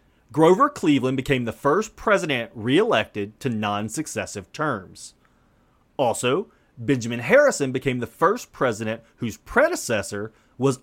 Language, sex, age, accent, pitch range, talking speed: English, male, 30-49, American, 110-175 Hz, 110 wpm